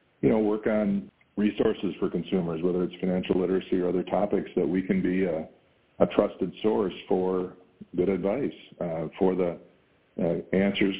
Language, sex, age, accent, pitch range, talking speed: English, male, 50-69, American, 85-95 Hz, 165 wpm